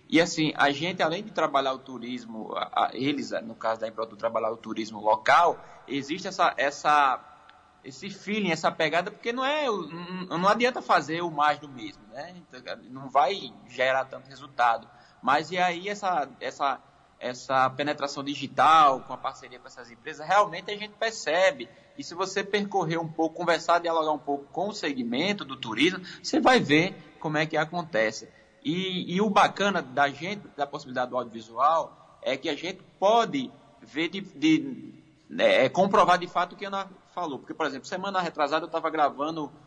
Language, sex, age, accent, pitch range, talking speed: Portuguese, male, 20-39, Brazilian, 140-195 Hz, 170 wpm